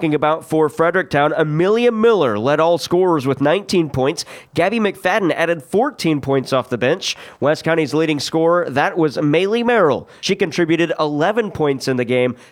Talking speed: 170 wpm